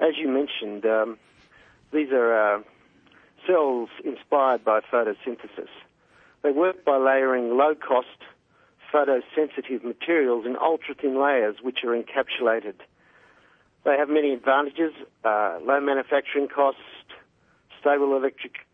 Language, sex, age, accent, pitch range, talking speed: English, male, 50-69, Australian, 120-140 Hz, 110 wpm